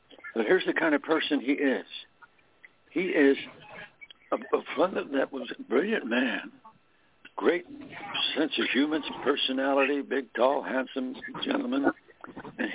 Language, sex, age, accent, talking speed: English, male, 60-79, American, 130 wpm